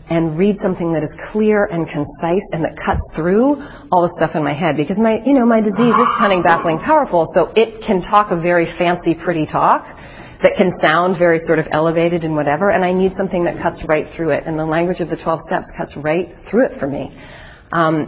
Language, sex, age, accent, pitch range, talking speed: English, female, 40-59, American, 155-185 Hz, 230 wpm